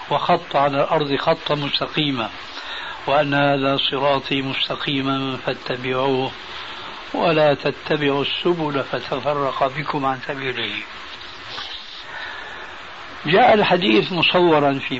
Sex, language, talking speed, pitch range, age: male, Arabic, 85 wpm, 135-170 Hz, 60-79